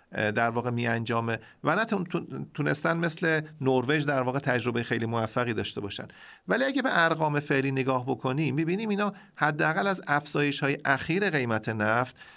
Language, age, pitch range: Persian, 40-59, 125-155 Hz